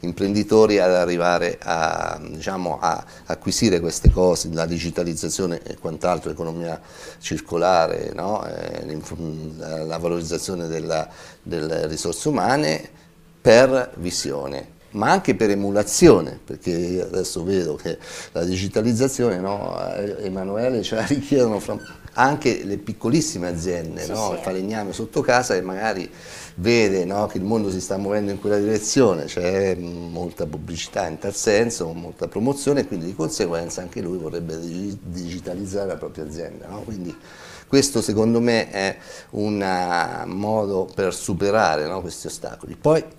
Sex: male